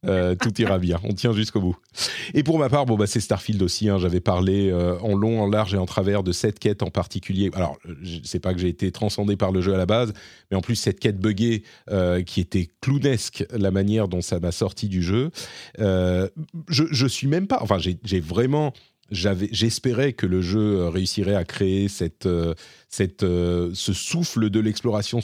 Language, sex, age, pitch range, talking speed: French, male, 40-59, 90-110 Hz, 215 wpm